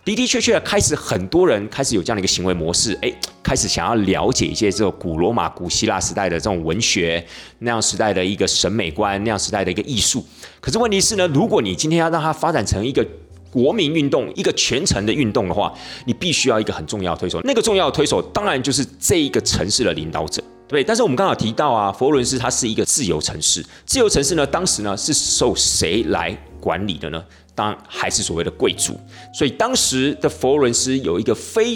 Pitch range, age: 90-140 Hz, 30-49